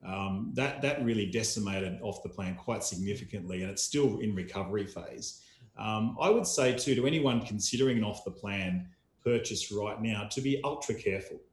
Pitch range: 100-120 Hz